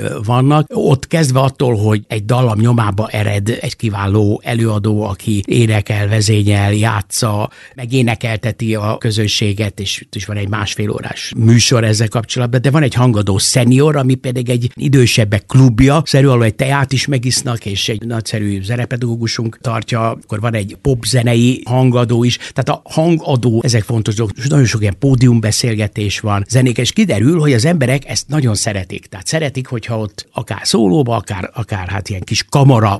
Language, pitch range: Hungarian, 110-135 Hz